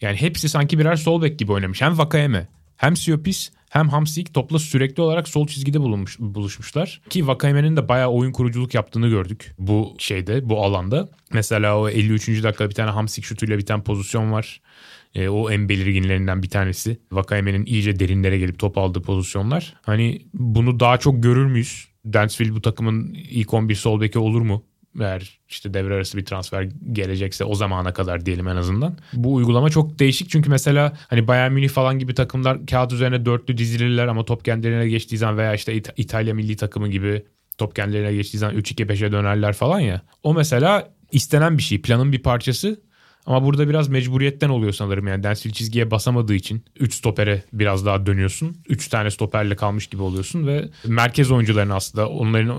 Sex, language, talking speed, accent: male, Turkish, 175 wpm, native